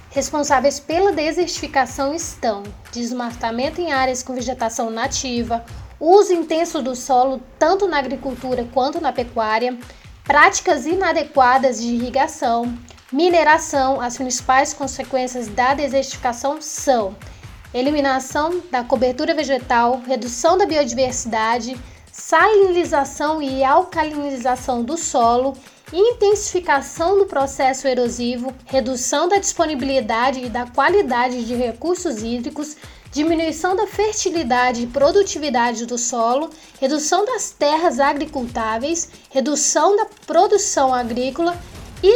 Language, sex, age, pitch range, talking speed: Portuguese, female, 20-39, 255-325 Hz, 100 wpm